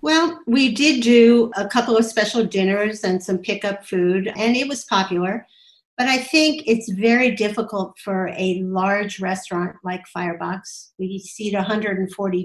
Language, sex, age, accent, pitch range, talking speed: English, female, 50-69, American, 185-215 Hz, 155 wpm